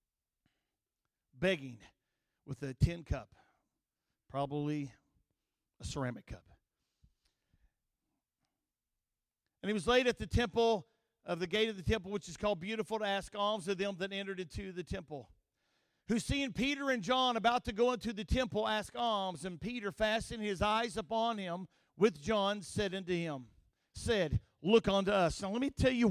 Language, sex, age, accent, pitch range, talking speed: English, male, 50-69, American, 200-260 Hz, 160 wpm